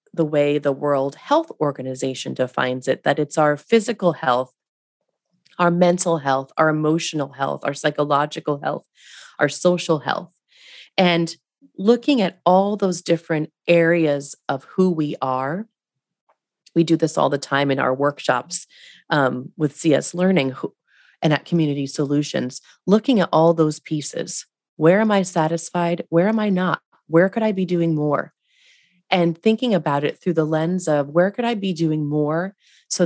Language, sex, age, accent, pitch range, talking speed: English, female, 30-49, American, 145-180 Hz, 160 wpm